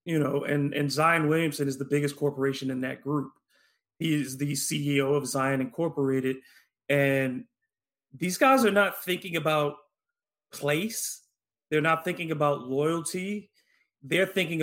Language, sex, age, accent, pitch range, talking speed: English, male, 30-49, American, 145-185 Hz, 145 wpm